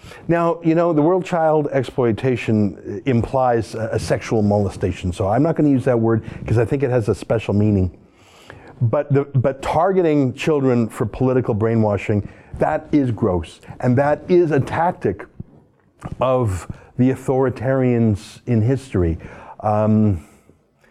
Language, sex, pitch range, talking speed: English, male, 105-135 Hz, 145 wpm